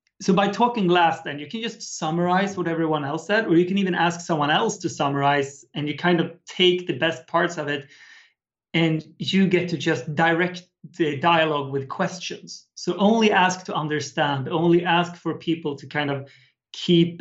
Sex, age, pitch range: male, 30-49, 150-180 Hz